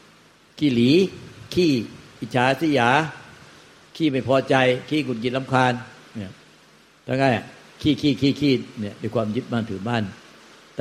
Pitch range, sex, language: 105-125 Hz, male, Thai